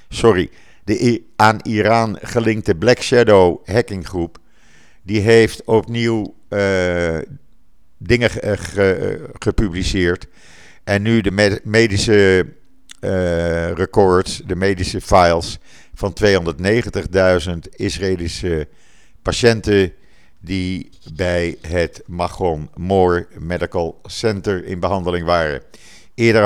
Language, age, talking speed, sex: Dutch, 50-69, 95 wpm, male